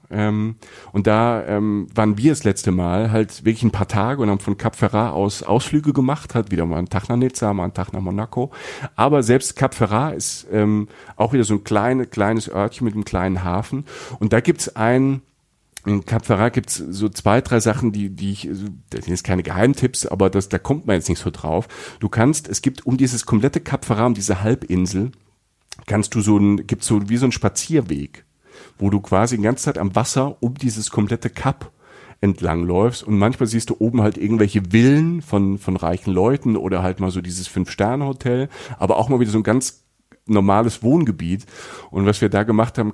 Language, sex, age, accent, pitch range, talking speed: German, male, 50-69, German, 100-125 Hz, 210 wpm